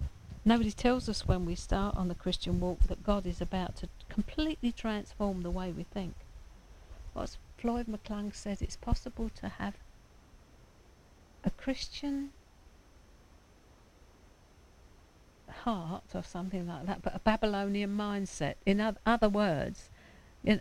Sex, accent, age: female, British, 50-69